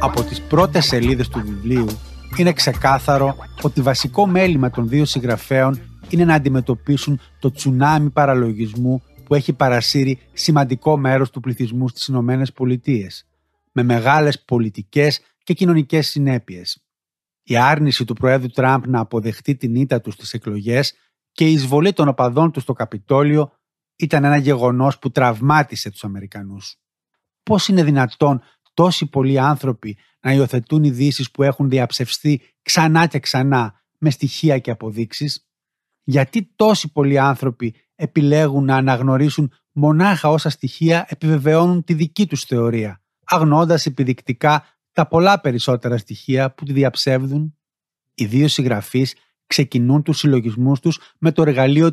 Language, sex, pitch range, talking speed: Greek, male, 125-150 Hz, 135 wpm